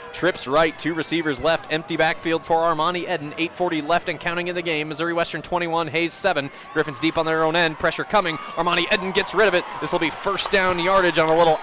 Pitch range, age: 130-170 Hz, 30-49